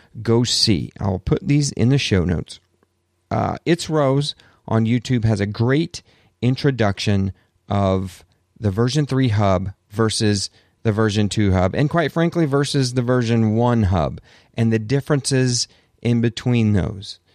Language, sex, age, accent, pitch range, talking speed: English, male, 40-59, American, 100-130 Hz, 145 wpm